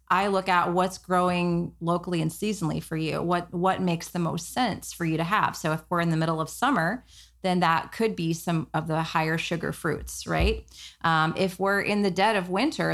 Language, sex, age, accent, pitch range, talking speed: English, female, 30-49, American, 160-185 Hz, 220 wpm